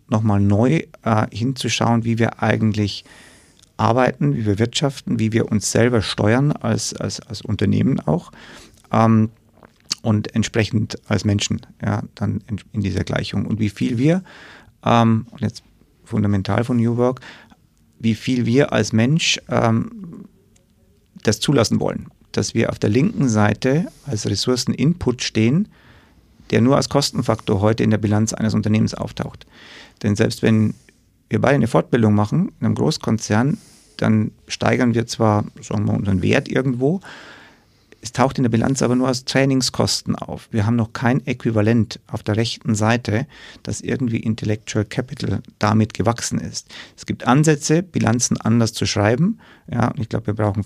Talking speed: 150 wpm